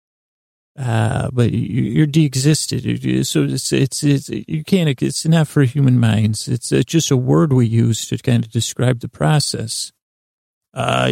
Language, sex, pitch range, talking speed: English, male, 115-145 Hz, 165 wpm